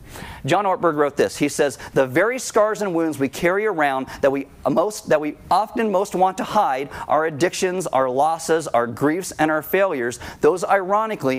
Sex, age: male, 40-59